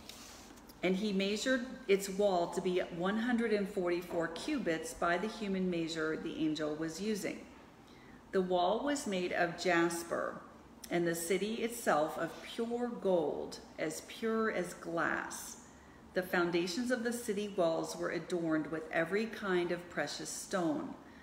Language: English